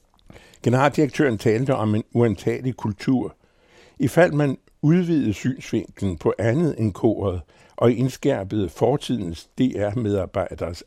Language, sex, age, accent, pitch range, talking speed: Danish, male, 60-79, American, 100-130 Hz, 100 wpm